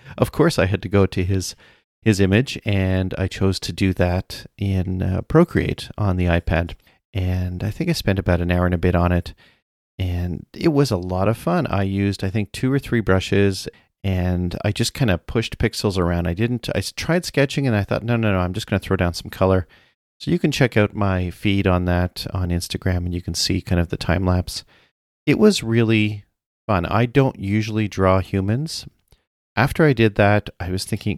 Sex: male